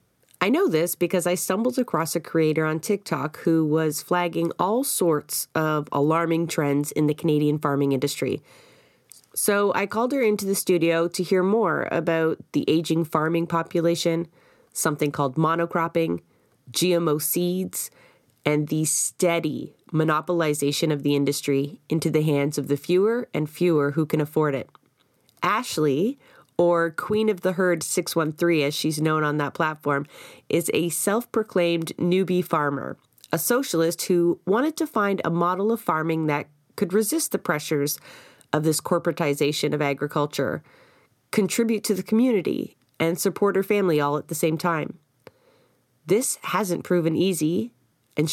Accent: American